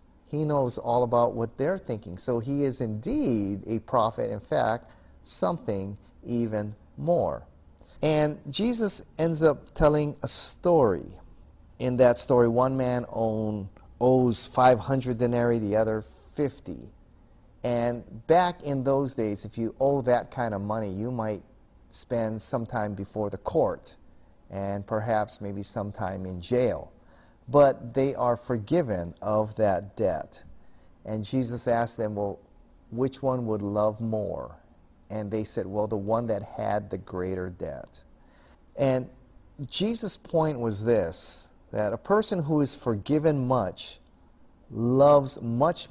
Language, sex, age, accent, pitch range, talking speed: English, male, 30-49, American, 105-130 Hz, 140 wpm